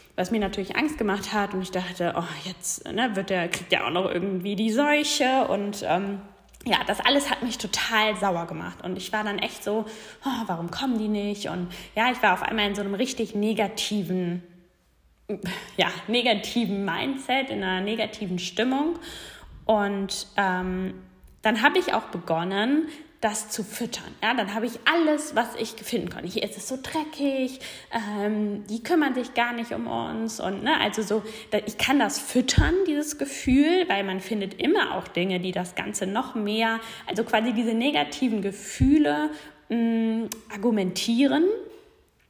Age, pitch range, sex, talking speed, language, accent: 10-29, 190-240 Hz, female, 170 wpm, German, German